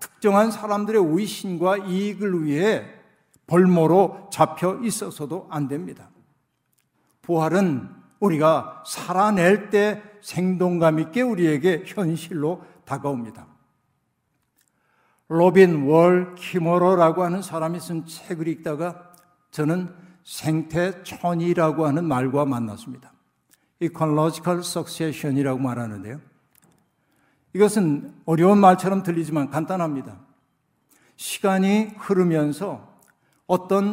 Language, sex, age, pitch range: Korean, male, 60-79, 155-190 Hz